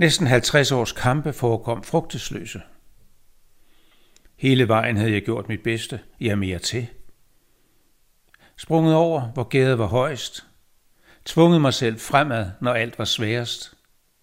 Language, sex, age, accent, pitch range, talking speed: Danish, male, 60-79, native, 105-140 Hz, 125 wpm